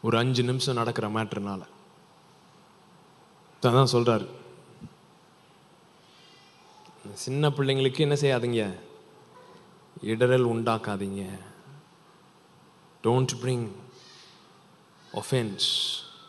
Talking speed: 35 wpm